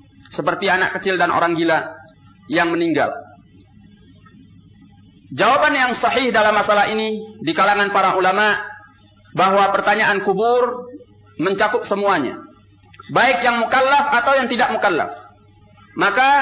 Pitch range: 190-245 Hz